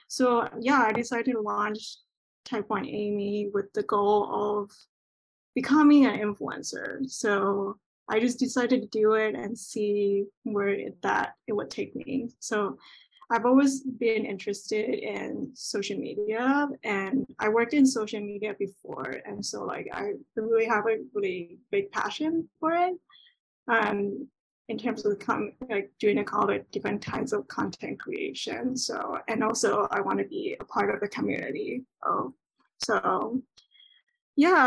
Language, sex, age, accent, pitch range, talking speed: English, female, 10-29, American, 210-270 Hz, 155 wpm